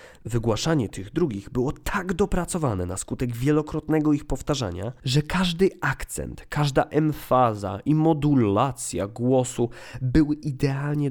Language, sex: Polish, male